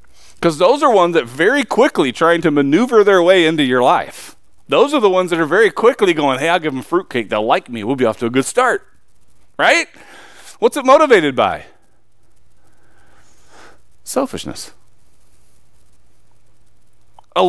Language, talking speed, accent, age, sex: English, 160 wpm, American, 40-59, male